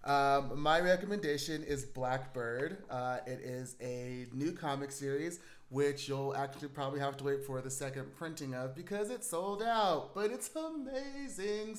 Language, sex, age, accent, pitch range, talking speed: English, male, 30-49, American, 125-160 Hz, 160 wpm